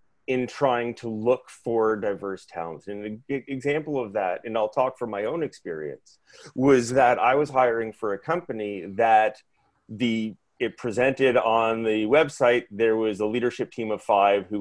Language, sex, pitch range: English, male, 115-140 Hz